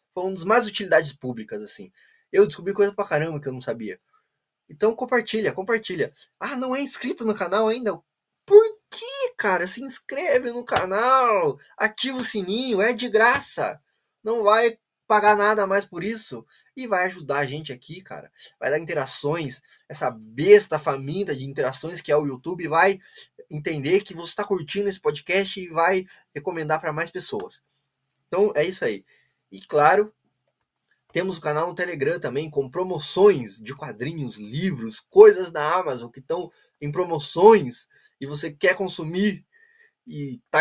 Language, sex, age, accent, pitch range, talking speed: Portuguese, male, 20-39, Brazilian, 155-225 Hz, 160 wpm